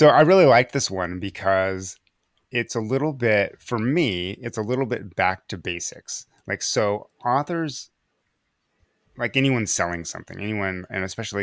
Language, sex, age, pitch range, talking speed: English, male, 30-49, 95-120 Hz, 160 wpm